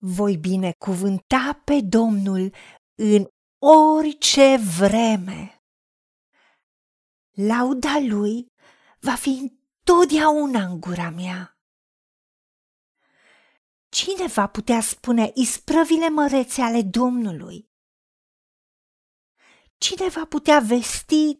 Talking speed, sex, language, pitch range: 80 wpm, female, Romanian, 195-280 Hz